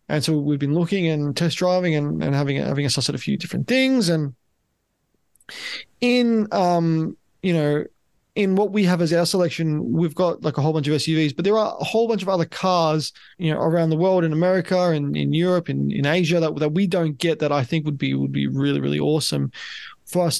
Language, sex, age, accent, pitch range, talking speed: English, male, 20-39, Australian, 150-185 Hz, 230 wpm